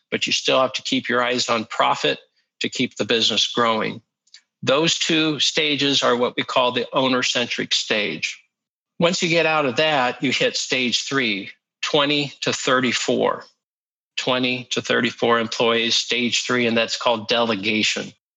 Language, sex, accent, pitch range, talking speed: English, male, American, 115-145 Hz, 155 wpm